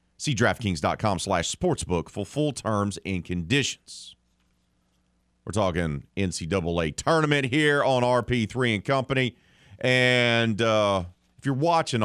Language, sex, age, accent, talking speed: English, male, 40-59, American, 115 wpm